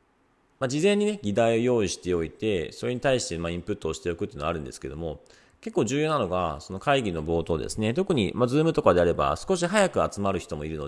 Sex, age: male, 40-59